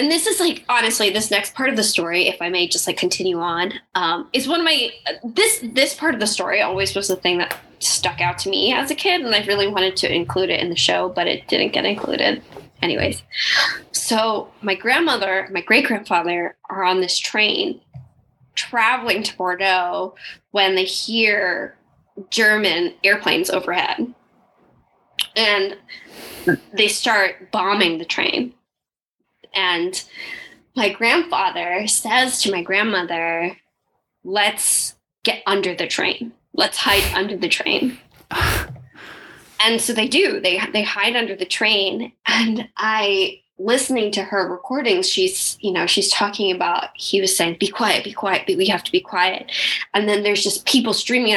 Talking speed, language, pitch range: 165 wpm, English, 185-235 Hz